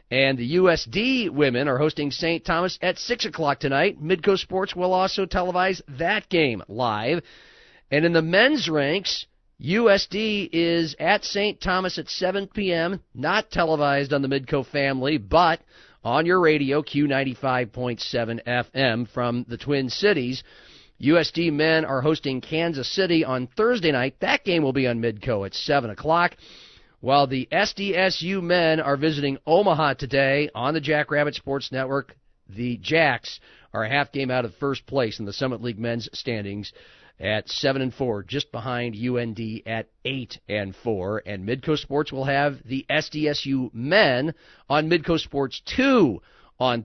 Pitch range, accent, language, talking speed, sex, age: 125-165 Hz, American, English, 155 wpm, male, 40-59